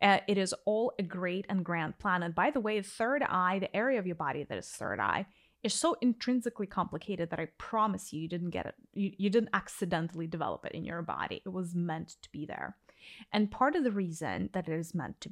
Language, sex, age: English, female, 10-29